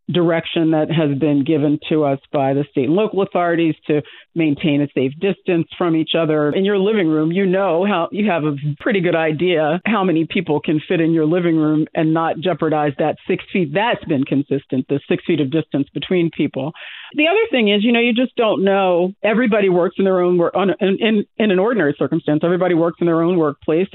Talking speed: 220 wpm